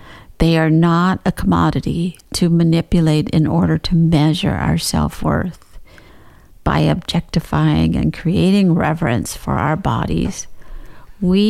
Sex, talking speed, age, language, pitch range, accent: female, 115 wpm, 50-69, English, 150-185 Hz, American